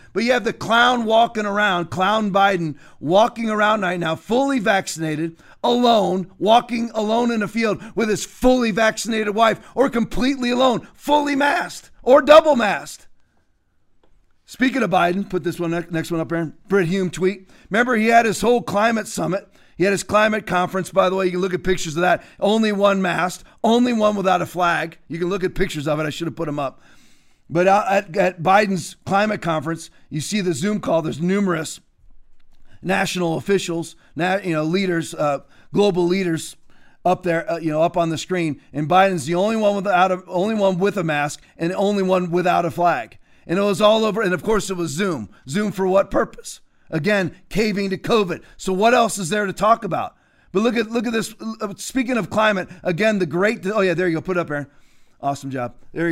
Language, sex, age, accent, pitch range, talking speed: English, male, 40-59, American, 170-215 Hz, 200 wpm